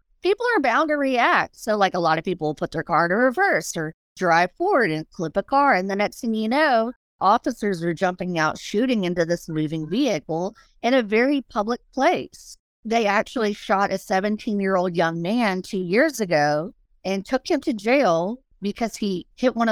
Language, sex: English, female